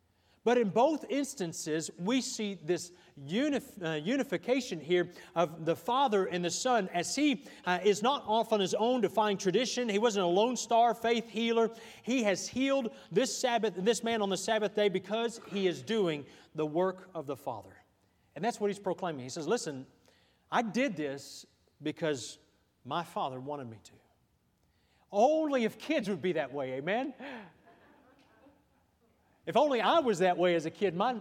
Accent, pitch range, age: American, 155-225 Hz, 40-59